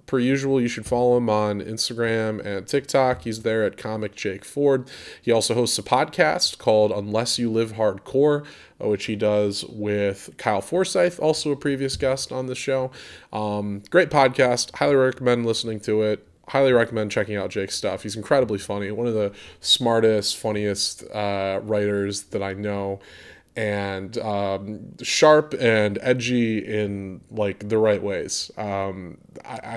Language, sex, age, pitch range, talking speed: English, male, 20-39, 105-130 Hz, 155 wpm